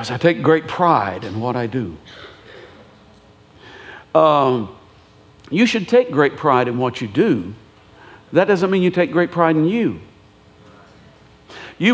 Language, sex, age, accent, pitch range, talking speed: English, male, 60-79, American, 130-170 Hz, 140 wpm